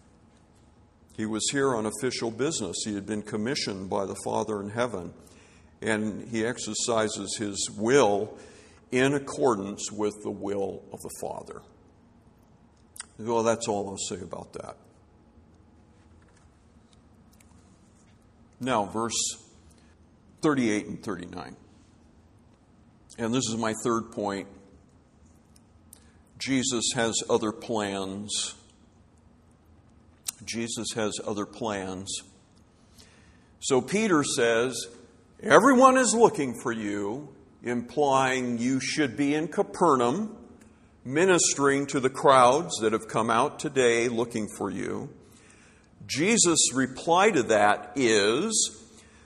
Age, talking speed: 50-69, 105 wpm